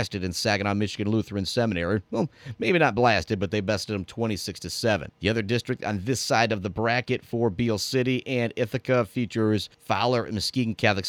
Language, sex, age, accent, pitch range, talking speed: English, male, 30-49, American, 105-130 Hz, 180 wpm